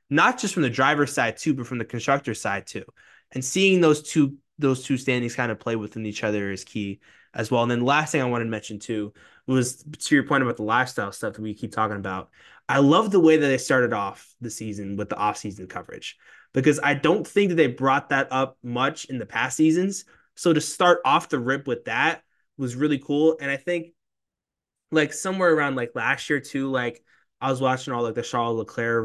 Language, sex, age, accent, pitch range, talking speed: English, male, 20-39, American, 115-145 Hz, 230 wpm